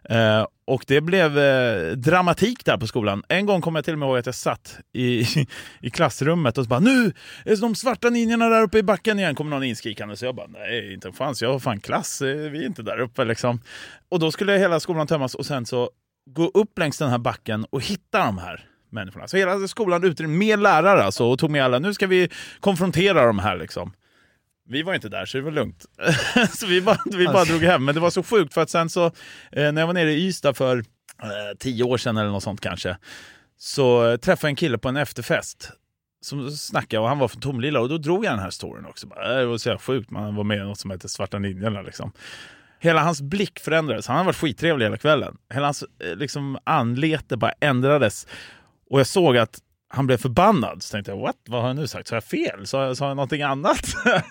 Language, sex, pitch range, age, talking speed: Swedish, male, 115-170 Hz, 30-49, 235 wpm